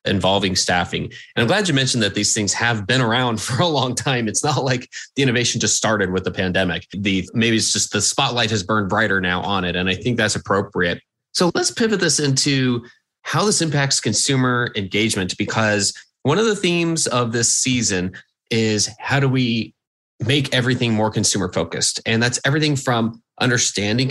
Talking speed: 190 wpm